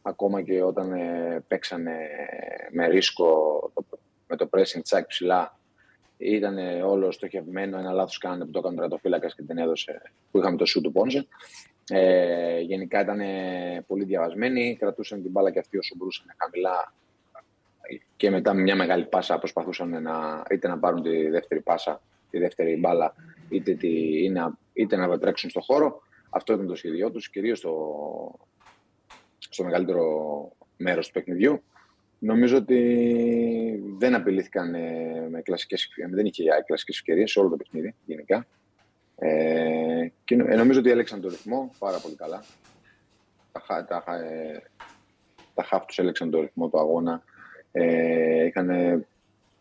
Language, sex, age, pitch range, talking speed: Greek, male, 30-49, 85-105 Hz, 140 wpm